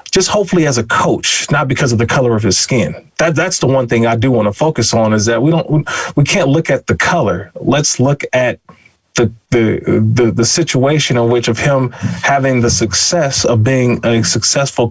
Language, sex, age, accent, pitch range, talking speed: English, male, 30-49, American, 115-145 Hz, 210 wpm